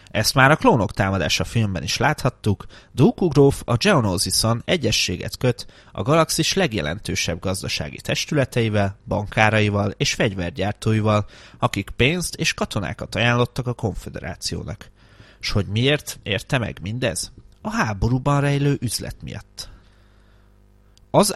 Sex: male